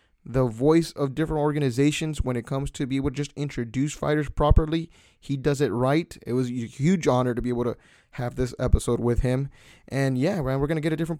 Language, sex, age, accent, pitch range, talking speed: English, male, 20-39, American, 125-160 Hz, 225 wpm